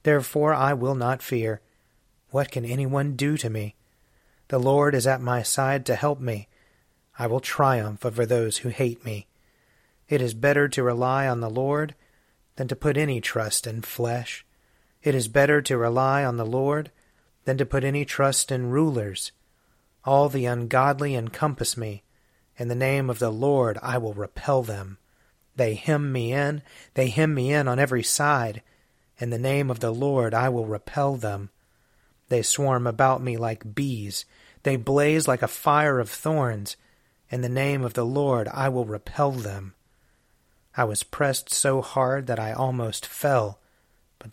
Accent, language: American, English